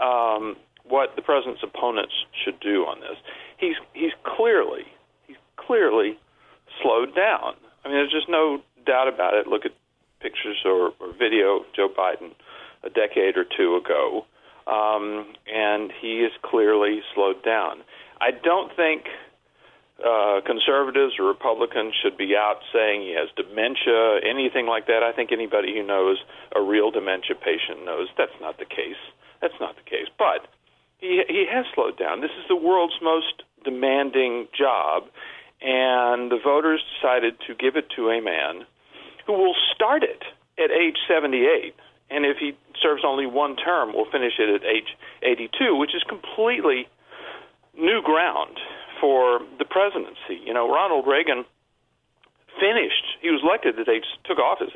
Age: 50-69